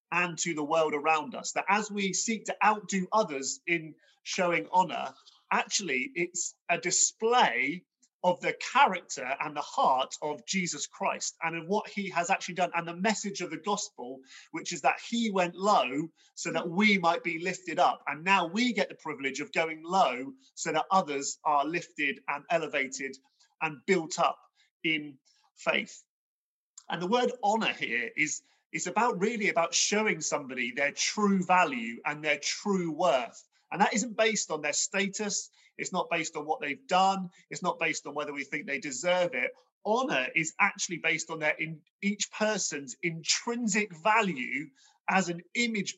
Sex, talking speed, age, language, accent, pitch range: male, 175 wpm, 30-49, English, British, 160-210 Hz